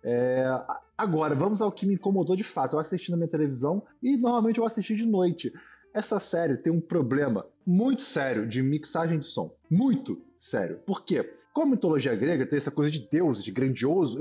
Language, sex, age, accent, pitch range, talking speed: Portuguese, male, 20-39, Brazilian, 155-220 Hz, 195 wpm